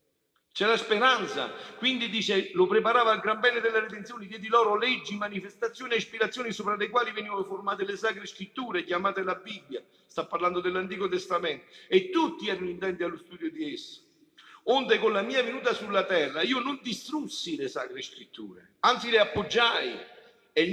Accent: native